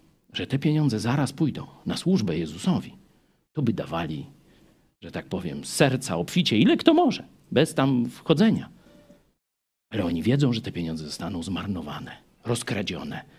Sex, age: male, 50-69